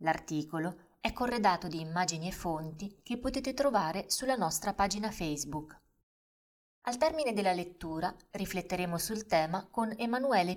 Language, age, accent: Italian, 20-39, native